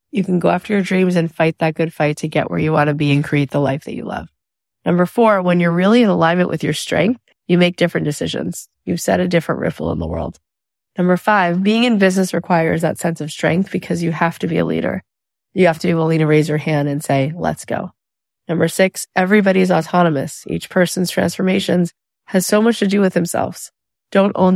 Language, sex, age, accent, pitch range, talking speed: English, female, 30-49, American, 150-185 Hz, 225 wpm